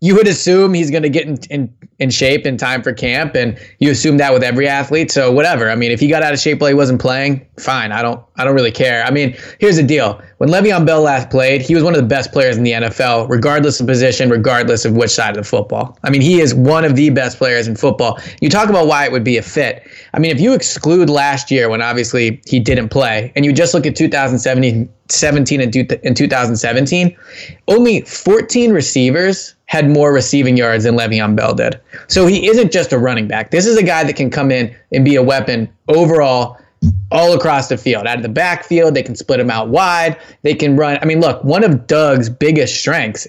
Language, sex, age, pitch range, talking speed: English, male, 20-39, 125-155 Hz, 240 wpm